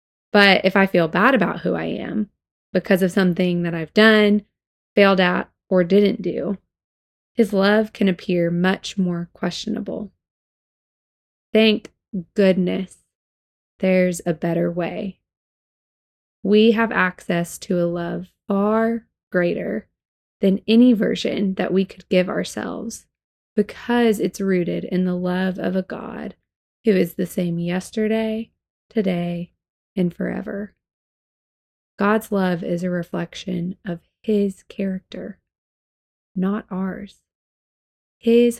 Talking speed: 120 wpm